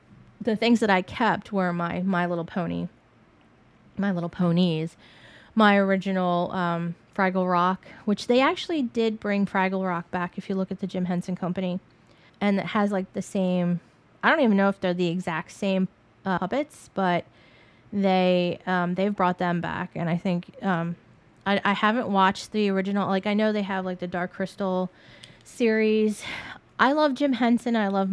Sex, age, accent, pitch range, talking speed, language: female, 20-39, American, 180-200 Hz, 180 wpm, English